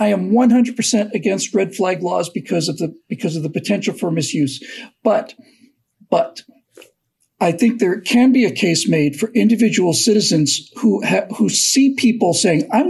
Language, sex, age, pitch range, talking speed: English, male, 50-69, 175-235 Hz, 170 wpm